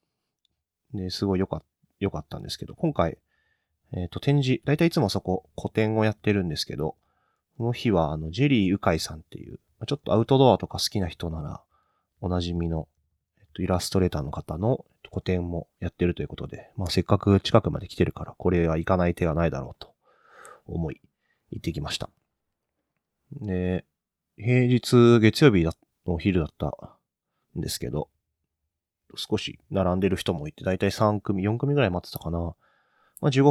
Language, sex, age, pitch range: Japanese, male, 30-49, 85-110 Hz